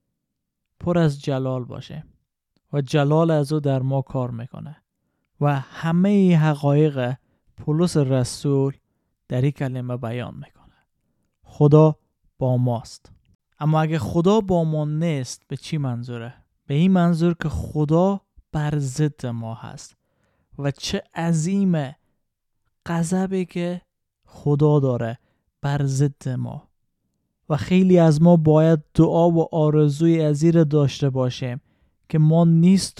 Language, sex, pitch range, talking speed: Persian, male, 130-165 Hz, 125 wpm